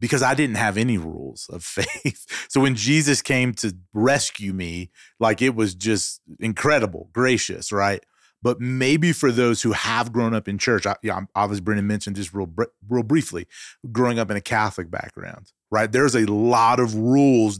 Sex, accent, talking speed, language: male, American, 190 wpm, English